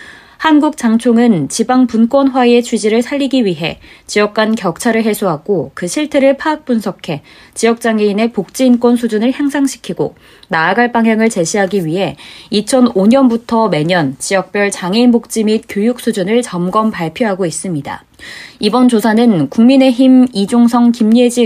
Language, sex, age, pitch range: Korean, female, 20-39, 190-245 Hz